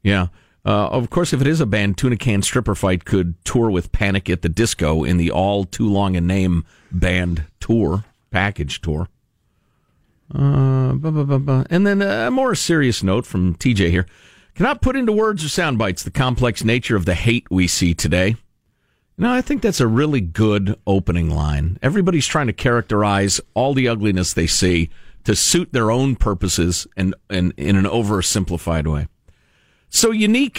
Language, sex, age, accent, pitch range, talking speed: English, male, 50-69, American, 90-130 Hz, 175 wpm